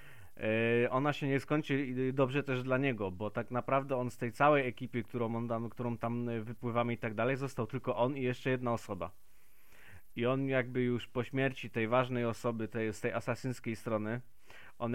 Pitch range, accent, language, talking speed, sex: 120-150 Hz, native, Polish, 175 wpm, male